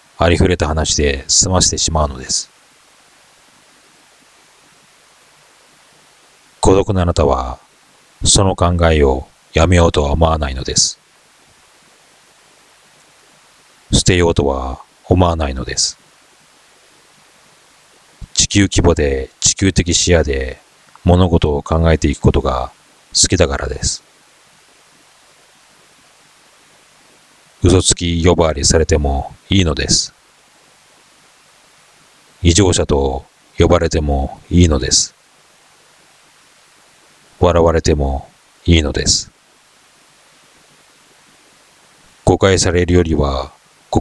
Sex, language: male, Japanese